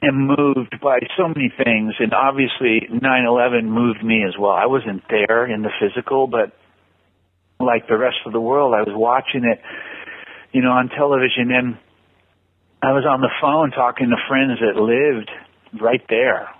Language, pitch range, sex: English, 100-135 Hz, male